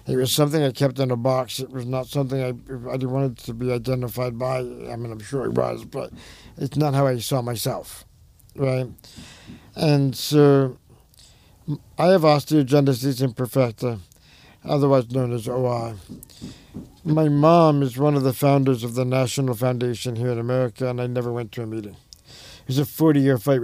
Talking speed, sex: 175 wpm, male